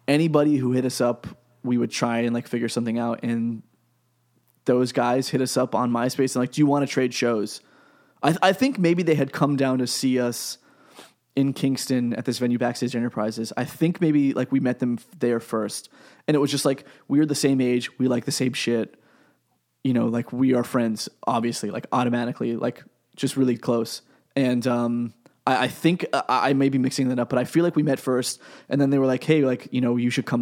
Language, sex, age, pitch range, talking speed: English, male, 20-39, 120-135 Hz, 225 wpm